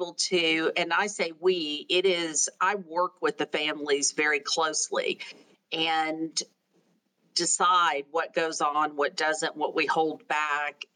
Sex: female